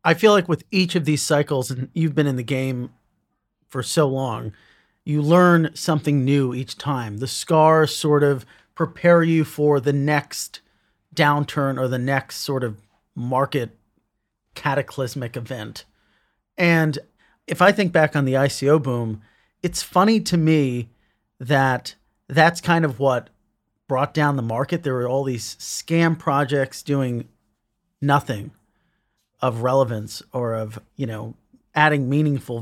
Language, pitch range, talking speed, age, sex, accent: English, 125-165 Hz, 145 wpm, 30-49, male, American